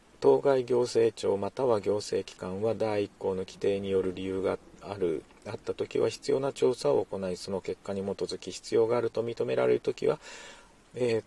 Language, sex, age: Japanese, male, 40-59